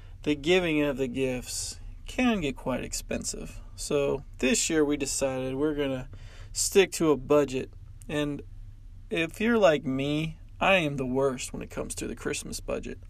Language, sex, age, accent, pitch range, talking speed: English, male, 20-39, American, 100-150 Hz, 170 wpm